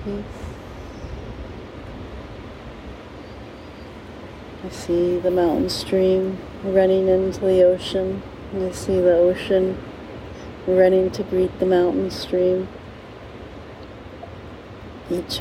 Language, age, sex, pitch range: English, 40-59, female, 125-185 Hz